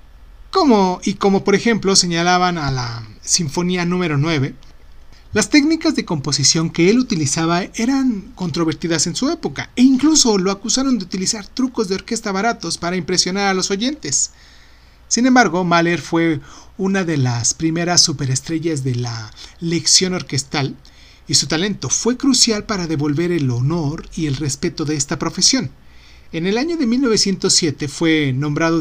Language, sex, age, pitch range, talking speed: Spanish, male, 40-59, 135-200 Hz, 150 wpm